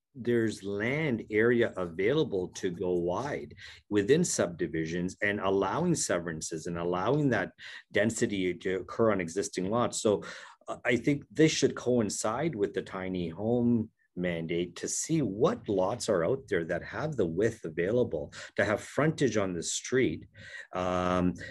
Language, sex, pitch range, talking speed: English, male, 90-120 Hz, 140 wpm